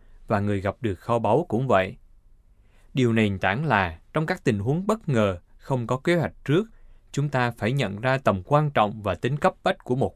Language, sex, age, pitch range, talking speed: Vietnamese, male, 20-39, 100-140 Hz, 220 wpm